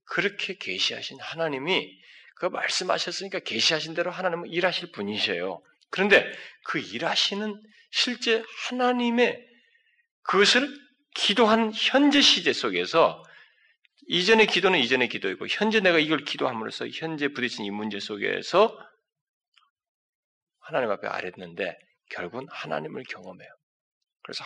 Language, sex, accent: Korean, male, native